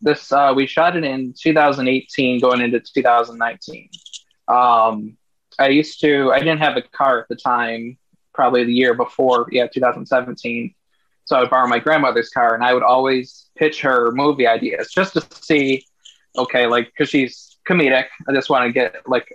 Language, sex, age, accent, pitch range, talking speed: English, male, 20-39, American, 120-145 Hz, 175 wpm